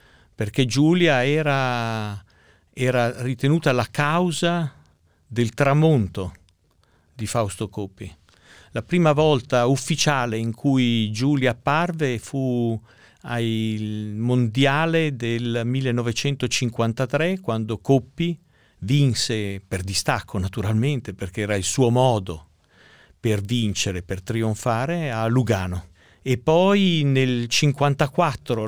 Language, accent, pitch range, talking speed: Italian, native, 105-150 Hz, 95 wpm